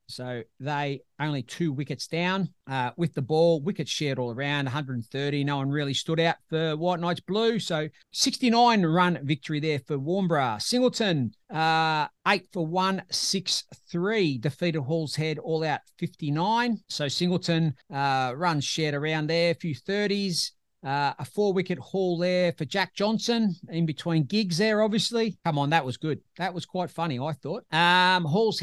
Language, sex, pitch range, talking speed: English, male, 150-190 Hz, 170 wpm